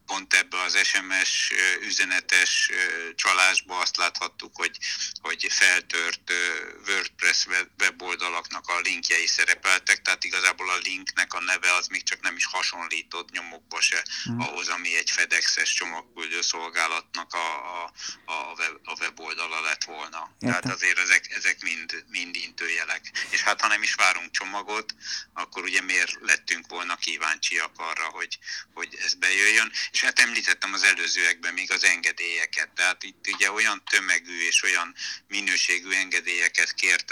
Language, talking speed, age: Hungarian, 130 wpm, 60-79